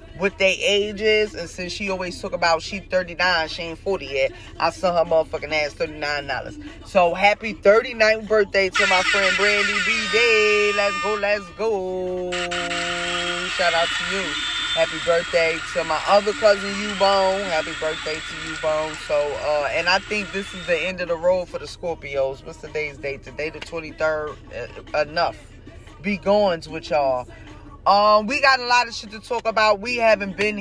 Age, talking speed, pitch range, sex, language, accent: 20-39, 180 wpm, 160-205 Hz, female, English, American